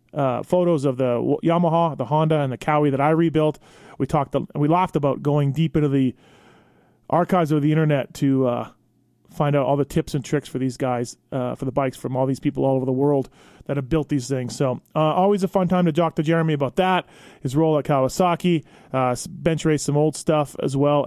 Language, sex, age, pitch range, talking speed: English, male, 30-49, 140-175 Hz, 230 wpm